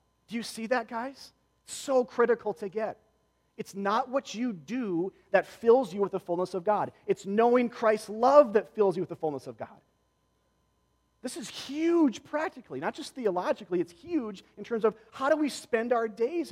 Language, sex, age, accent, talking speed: English, male, 30-49, American, 190 wpm